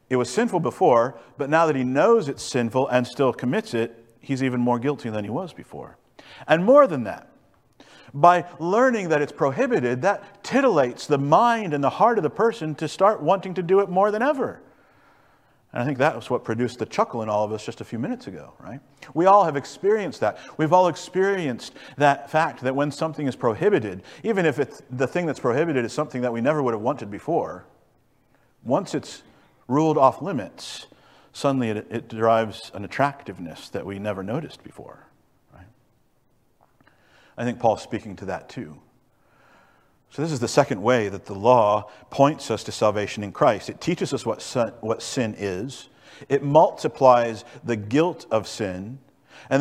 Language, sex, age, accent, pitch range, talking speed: English, male, 50-69, American, 115-170 Hz, 185 wpm